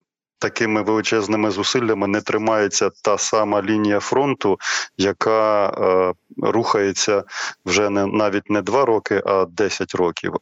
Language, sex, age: Ukrainian, male, 20-39